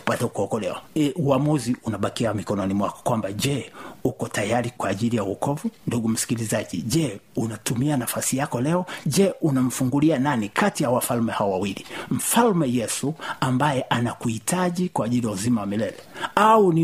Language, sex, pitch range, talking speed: Swahili, male, 115-150 Hz, 150 wpm